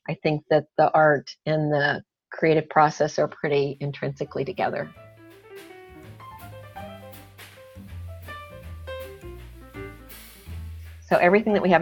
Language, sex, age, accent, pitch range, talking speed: English, female, 50-69, American, 155-185 Hz, 90 wpm